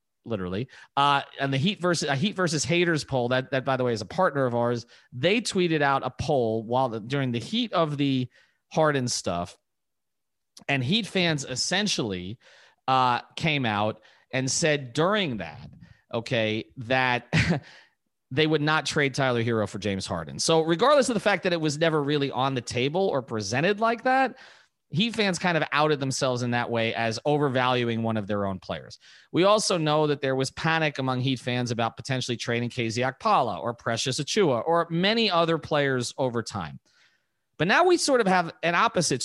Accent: American